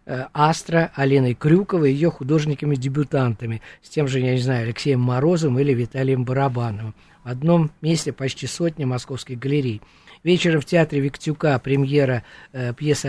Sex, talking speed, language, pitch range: male, 140 wpm, Russian, 125-145 Hz